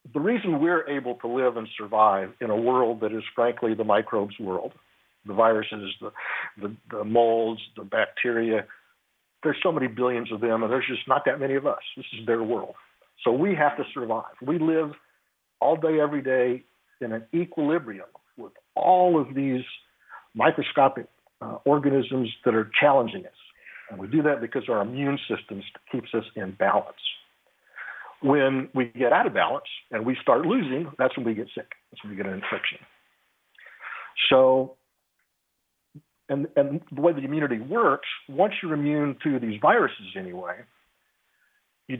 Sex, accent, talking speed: male, American, 165 wpm